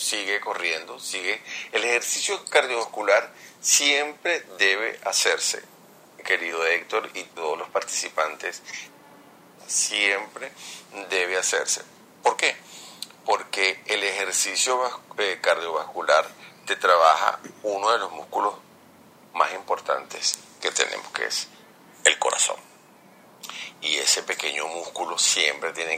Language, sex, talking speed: Spanish, male, 100 wpm